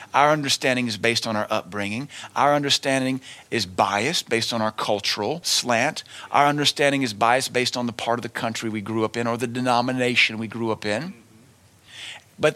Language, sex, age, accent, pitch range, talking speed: English, male, 40-59, American, 110-135 Hz, 185 wpm